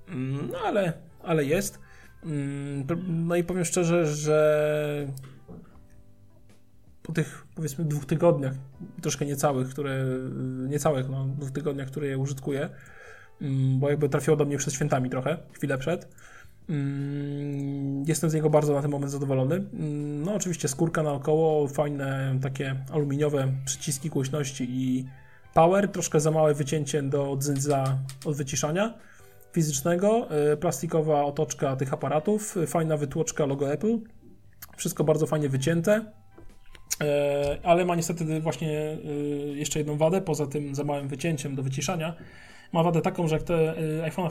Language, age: Polish, 20-39